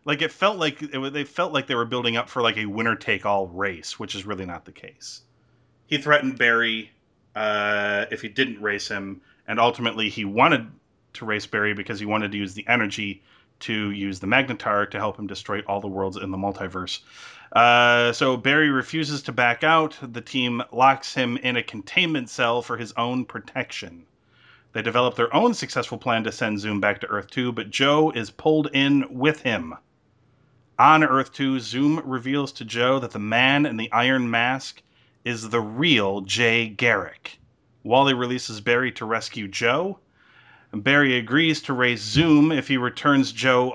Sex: male